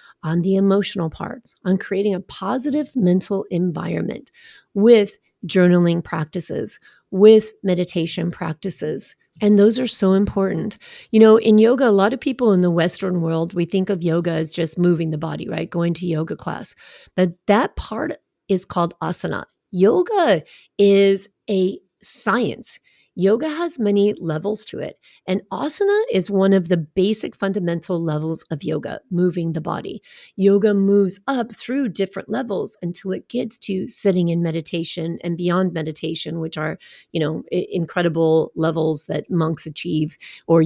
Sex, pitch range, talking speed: female, 170-215 Hz, 150 wpm